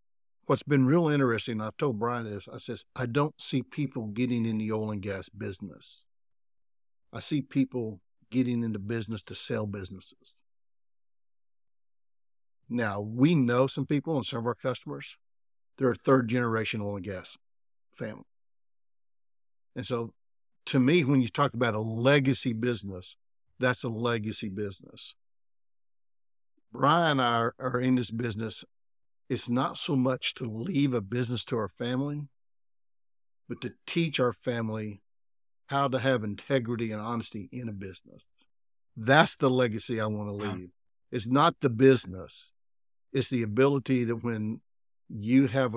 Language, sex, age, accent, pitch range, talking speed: English, male, 50-69, American, 100-130 Hz, 150 wpm